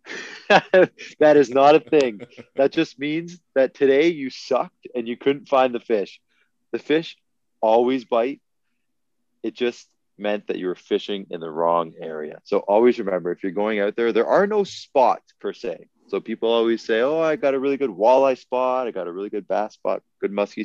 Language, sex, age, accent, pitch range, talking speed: English, male, 30-49, American, 110-150 Hz, 200 wpm